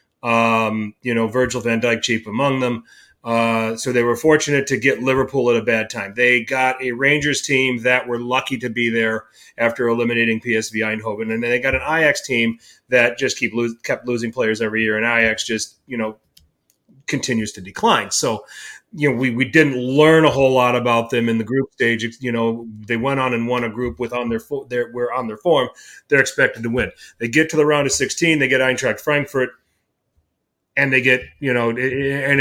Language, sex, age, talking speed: English, male, 30-49, 215 wpm